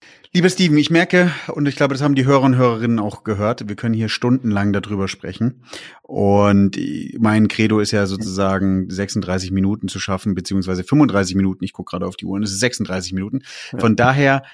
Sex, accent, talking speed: male, German, 195 wpm